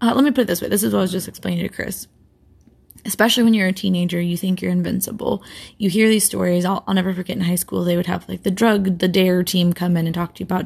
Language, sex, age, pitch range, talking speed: English, female, 20-39, 175-210 Hz, 295 wpm